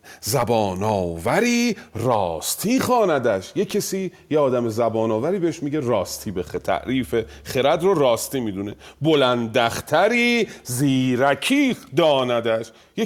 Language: Persian